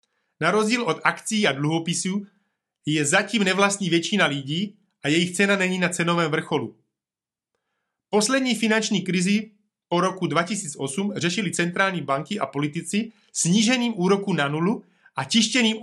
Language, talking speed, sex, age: Slovak, 135 wpm, male, 30-49